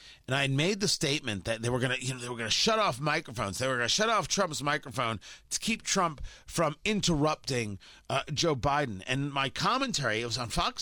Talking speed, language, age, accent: 215 wpm, English, 40-59, American